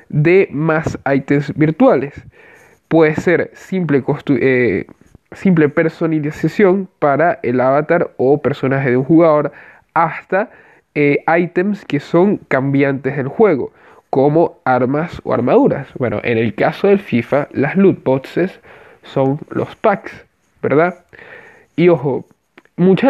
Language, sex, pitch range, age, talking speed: Spanish, male, 135-175 Hz, 20-39, 115 wpm